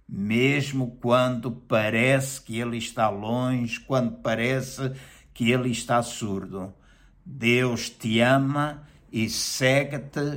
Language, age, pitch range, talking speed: Portuguese, 60-79, 110-125 Hz, 105 wpm